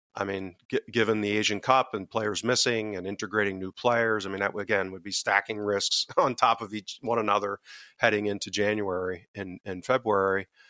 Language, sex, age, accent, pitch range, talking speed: English, male, 40-59, American, 95-115 Hz, 185 wpm